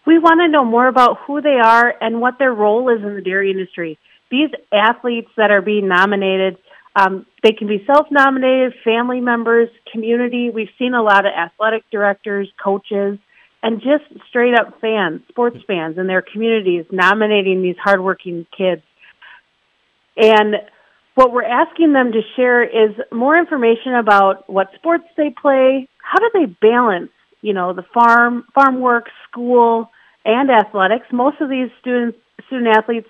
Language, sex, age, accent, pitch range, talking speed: English, female, 40-59, American, 205-250 Hz, 155 wpm